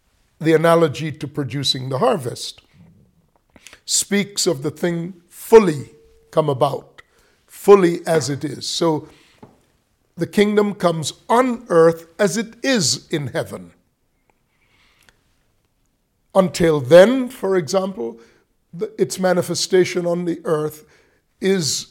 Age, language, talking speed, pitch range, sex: 50-69, English, 105 wpm, 150-195 Hz, male